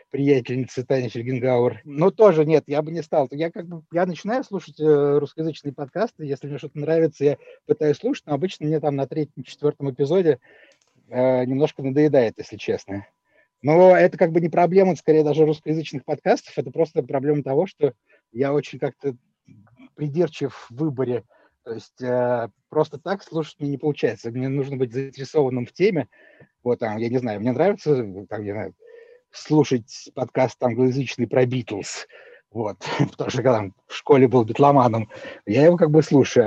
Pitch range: 125-160 Hz